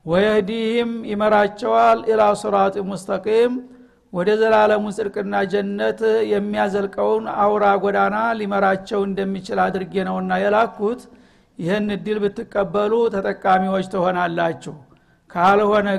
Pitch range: 190-210 Hz